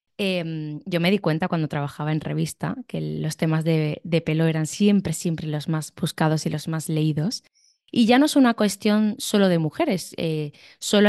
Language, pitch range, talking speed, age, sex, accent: Spanish, 160-205 Hz, 195 wpm, 20-39, female, Spanish